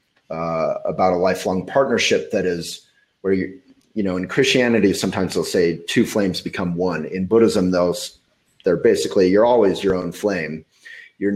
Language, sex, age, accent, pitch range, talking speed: English, male, 30-49, American, 90-120 Hz, 165 wpm